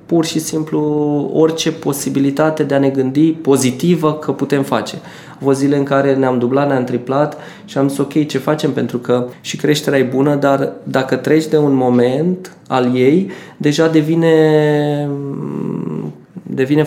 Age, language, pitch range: 20-39, Romanian, 125-150 Hz